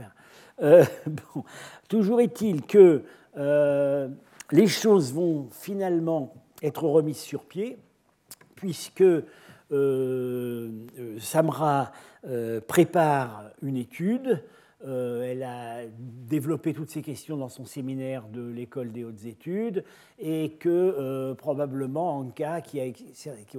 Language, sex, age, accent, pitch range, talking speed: French, male, 50-69, French, 130-180 Hz, 110 wpm